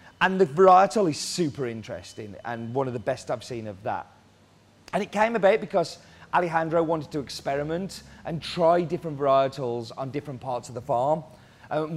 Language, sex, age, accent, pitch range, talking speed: English, male, 30-49, British, 120-165 Hz, 175 wpm